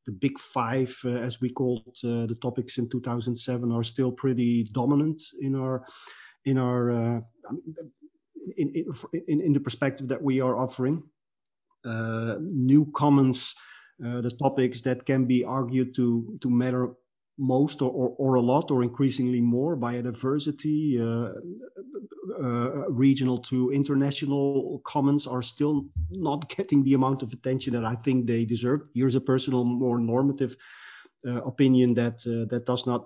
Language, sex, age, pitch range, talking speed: English, male, 40-59, 120-135 Hz, 150 wpm